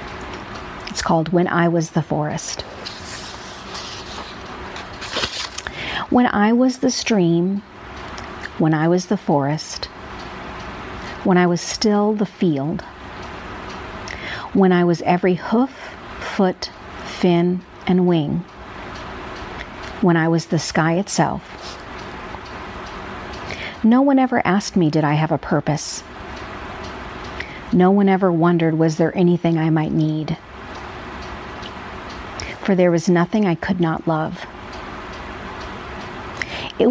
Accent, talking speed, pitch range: American, 110 wpm, 165-190 Hz